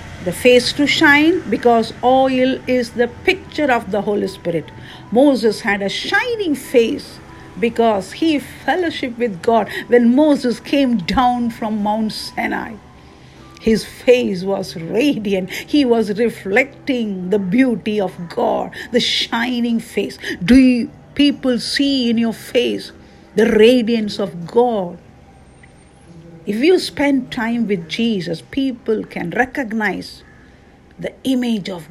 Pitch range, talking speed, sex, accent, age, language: 205-270 Hz, 125 wpm, female, Indian, 50-69, English